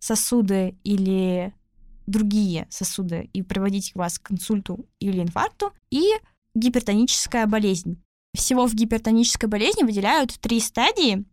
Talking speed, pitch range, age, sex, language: 110 wpm, 205-245 Hz, 10-29, female, Russian